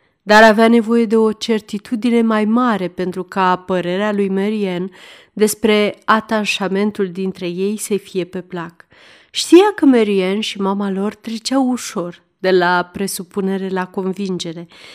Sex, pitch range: female, 185-250 Hz